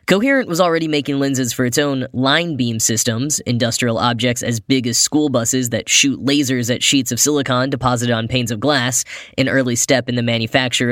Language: English